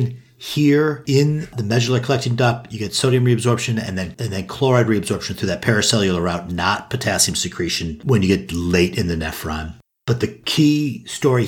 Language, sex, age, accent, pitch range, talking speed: English, male, 50-69, American, 95-120 Hz, 175 wpm